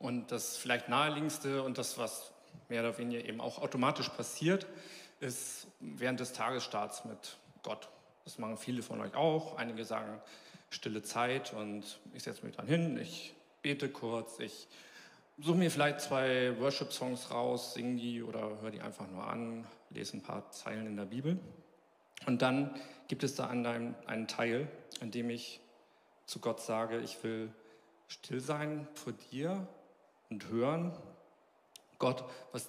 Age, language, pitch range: 40-59, German, 110-130 Hz